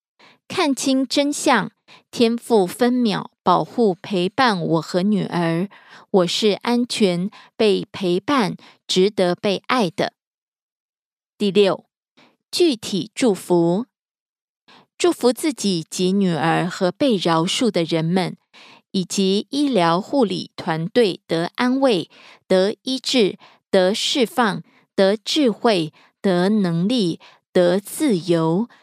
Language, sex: Korean, female